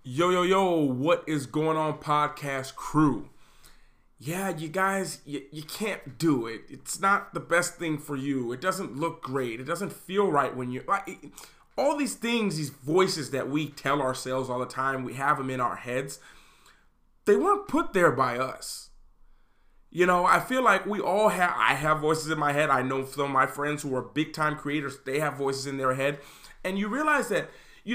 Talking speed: 200 wpm